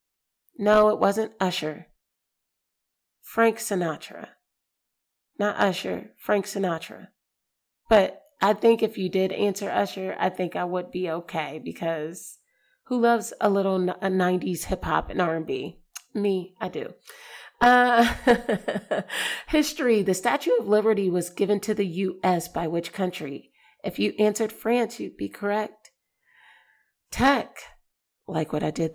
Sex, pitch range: female, 180-225 Hz